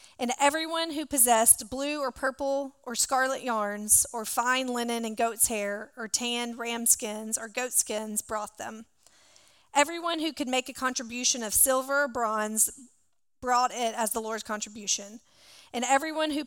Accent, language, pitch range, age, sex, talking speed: American, English, 220-265 Hz, 40-59, female, 160 wpm